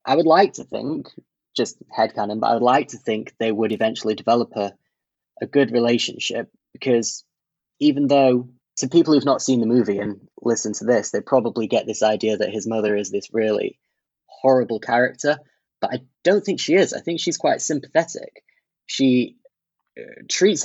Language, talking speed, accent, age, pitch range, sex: English, 180 wpm, British, 10-29, 110-135 Hz, male